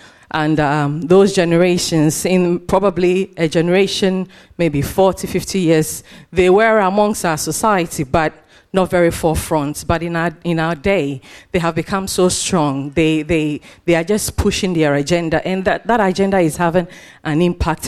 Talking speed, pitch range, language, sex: 160 wpm, 155-185 Hz, English, female